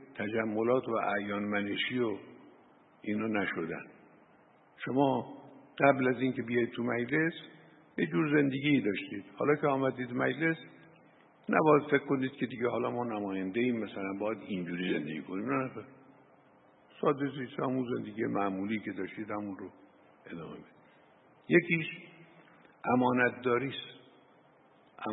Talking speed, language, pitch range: 115 wpm, Persian, 100-130 Hz